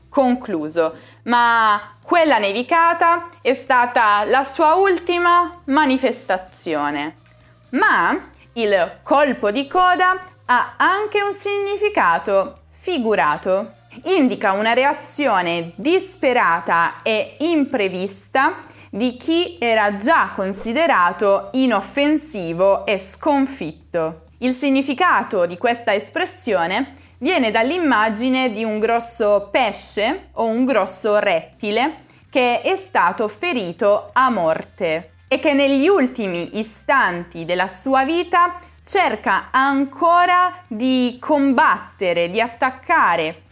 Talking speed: 95 wpm